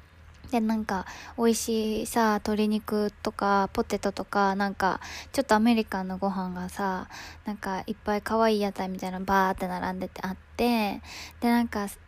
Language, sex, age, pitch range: Japanese, female, 20-39, 195-235 Hz